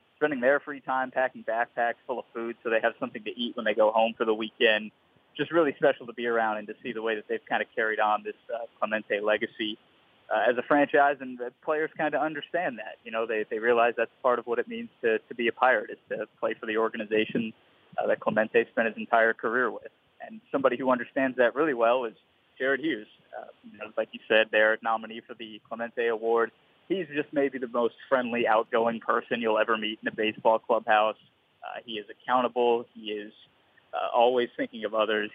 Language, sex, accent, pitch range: English, male, American, 115-130 Hz